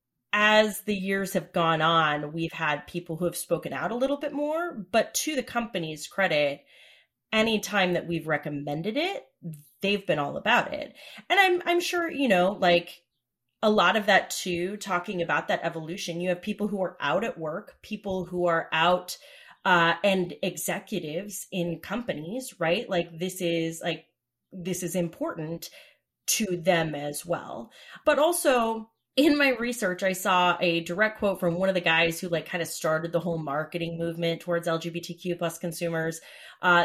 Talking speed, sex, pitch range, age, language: 175 wpm, female, 165-210 Hz, 30-49, English